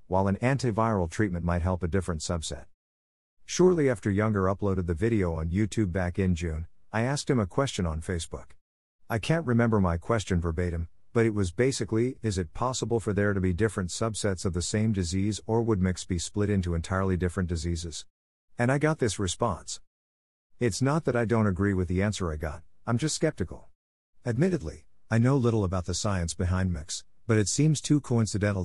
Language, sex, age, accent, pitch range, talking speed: English, male, 50-69, American, 90-115 Hz, 195 wpm